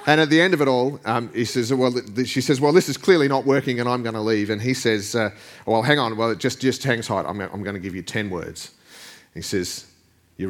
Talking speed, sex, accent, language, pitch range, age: 285 wpm, male, Australian, English, 105-140 Hz, 30-49